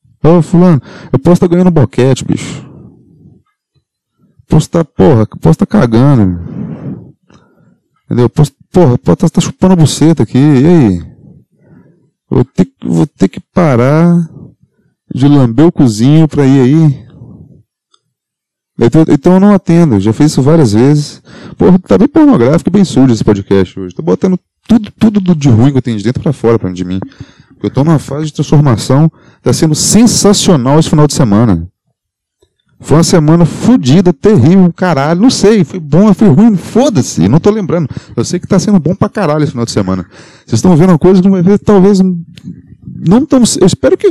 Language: Portuguese